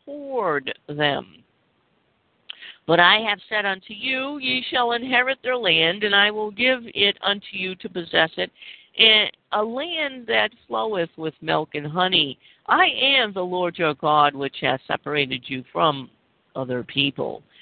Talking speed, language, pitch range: 145 wpm, English, 150-195 Hz